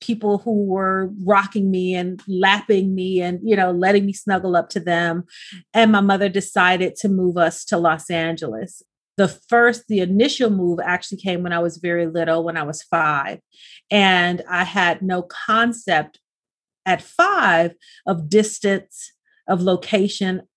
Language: English